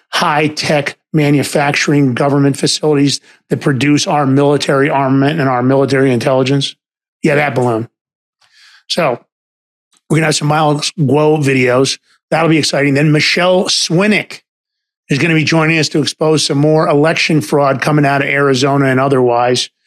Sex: male